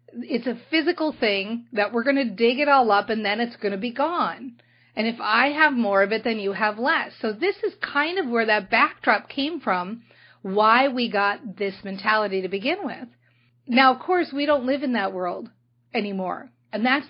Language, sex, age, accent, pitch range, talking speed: English, female, 40-59, American, 200-280 Hz, 210 wpm